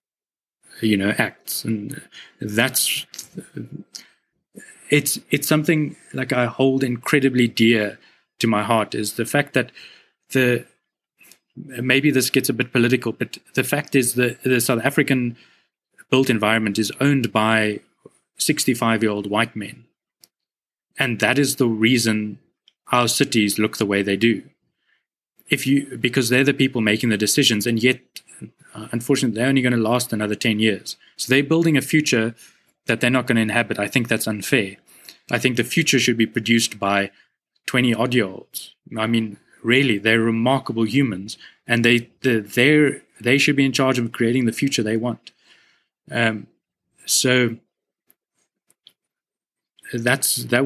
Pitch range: 110-130 Hz